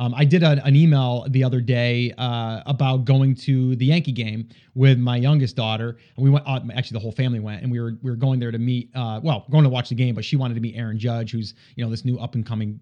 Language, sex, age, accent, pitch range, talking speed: English, male, 30-49, American, 125-180 Hz, 275 wpm